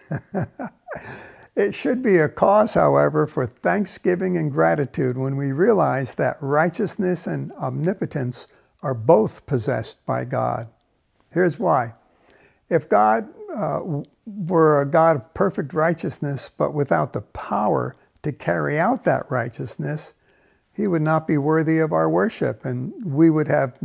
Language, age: English, 60-79